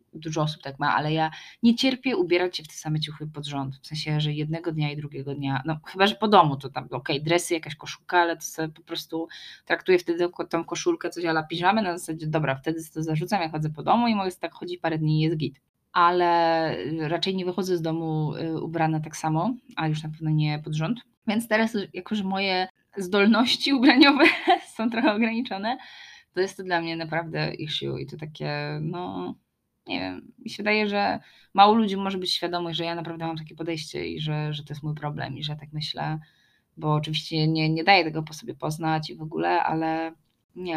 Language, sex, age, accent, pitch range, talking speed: Polish, female, 20-39, native, 155-185 Hz, 215 wpm